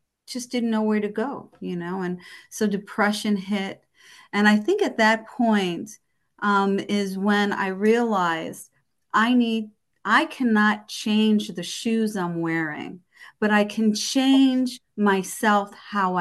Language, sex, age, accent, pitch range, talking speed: English, female, 40-59, American, 185-240 Hz, 140 wpm